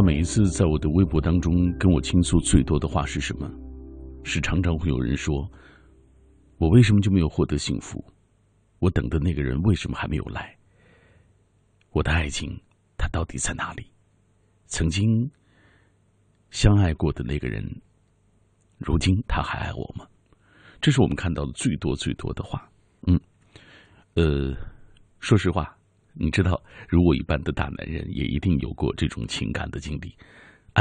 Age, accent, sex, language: 50-69, native, male, Chinese